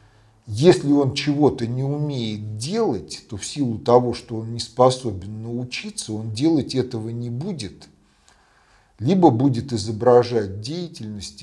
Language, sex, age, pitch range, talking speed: Russian, male, 40-59, 95-130 Hz, 125 wpm